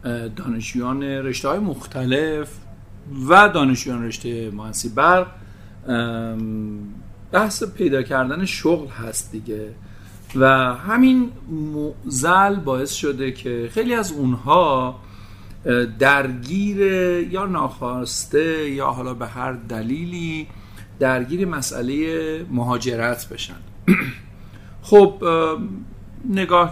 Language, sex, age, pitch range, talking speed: Persian, male, 50-69, 110-150 Hz, 85 wpm